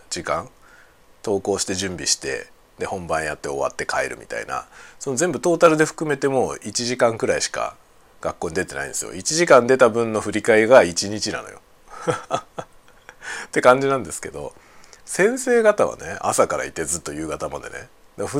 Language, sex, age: Japanese, male, 40-59